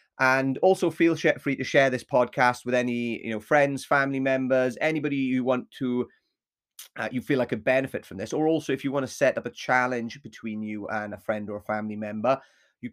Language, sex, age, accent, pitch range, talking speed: English, male, 30-49, British, 110-140 Hz, 210 wpm